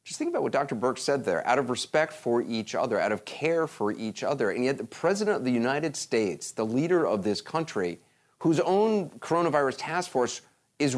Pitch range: 115-170 Hz